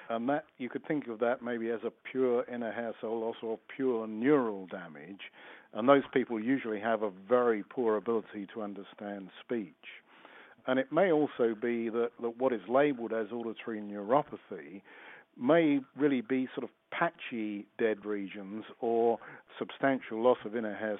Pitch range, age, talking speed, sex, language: 105-130 Hz, 50-69, 165 wpm, male, English